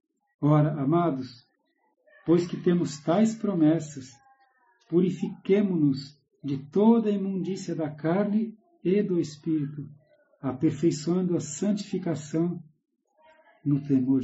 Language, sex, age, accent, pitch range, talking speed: Portuguese, male, 60-79, Brazilian, 145-205 Hz, 95 wpm